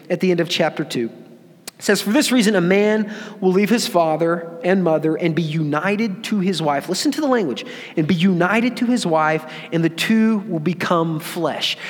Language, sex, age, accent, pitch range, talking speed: English, male, 30-49, American, 185-240 Hz, 205 wpm